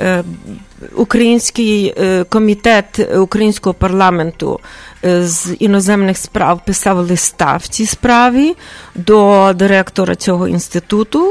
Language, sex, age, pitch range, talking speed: English, female, 40-59, 190-245 Hz, 85 wpm